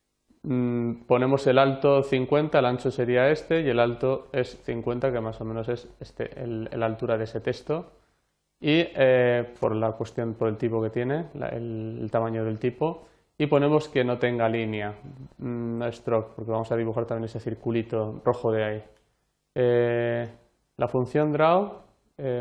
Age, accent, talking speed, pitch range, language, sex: 20-39, Spanish, 170 wpm, 115-130 Hz, Spanish, male